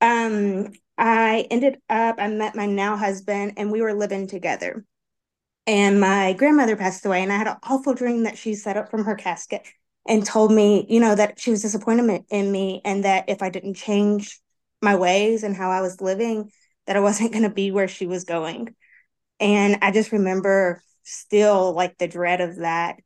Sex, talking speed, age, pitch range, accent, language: female, 200 wpm, 20-39, 195-220 Hz, American, English